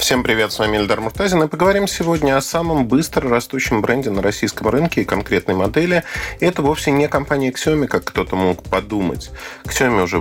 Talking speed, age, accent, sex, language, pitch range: 180 wpm, 40-59, native, male, Russian, 110-160 Hz